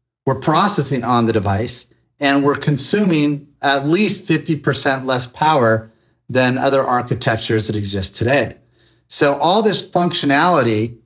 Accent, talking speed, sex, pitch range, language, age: American, 125 wpm, male, 120-150 Hz, English, 40-59